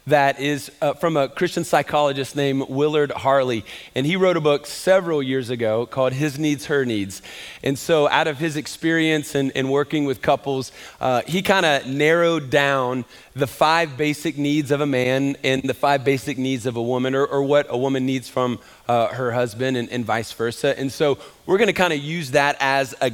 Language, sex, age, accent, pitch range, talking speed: English, male, 40-59, American, 135-170 Hz, 205 wpm